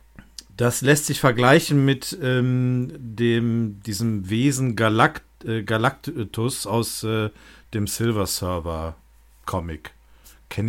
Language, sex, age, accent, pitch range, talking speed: German, male, 50-69, German, 100-135 Hz, 105 wpm